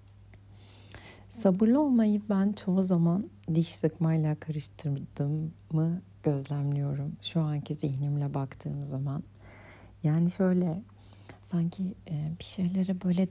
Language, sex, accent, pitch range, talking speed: Turkish, female, native, 145-175 Hz, 90 wpm